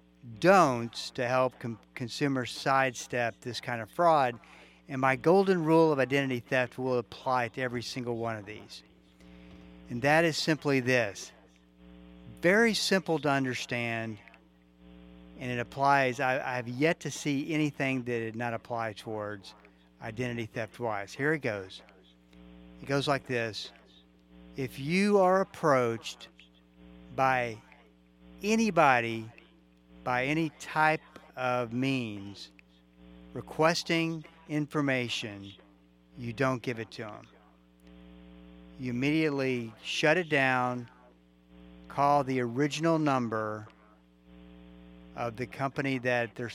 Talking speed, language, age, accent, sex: 115 wpm, English, 50-69, American, male